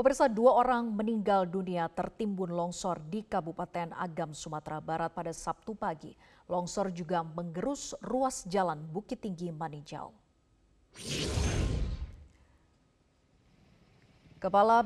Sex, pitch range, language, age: female, 170-210 Hz, Indonesian, 30-49